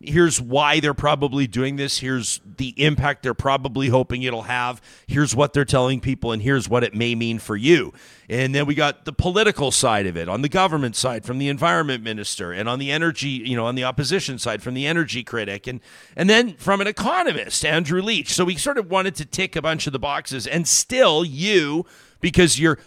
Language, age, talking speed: English, 40-59, 220 wpm